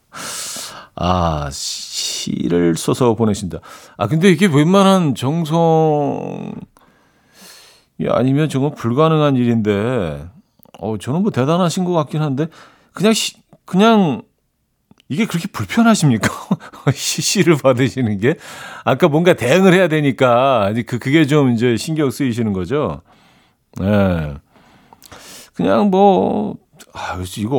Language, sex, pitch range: Korean, male, 105-155 Hz